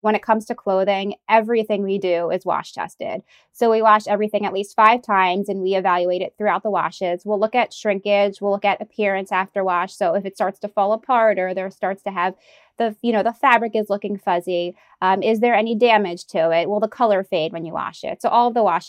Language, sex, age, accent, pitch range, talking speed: English, female, 20-39, American, 185-220 Hz, 240 wpm